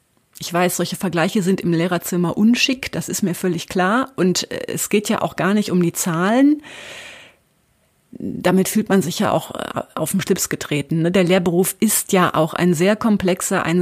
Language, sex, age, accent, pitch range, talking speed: German, female, 30-49, German, 170-205 Hz, 180 wpm